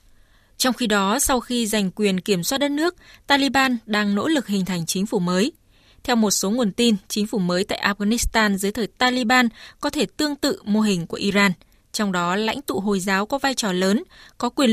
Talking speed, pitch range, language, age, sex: 215 wpm, 195-250 Hz, Vietnamese, 20-39, female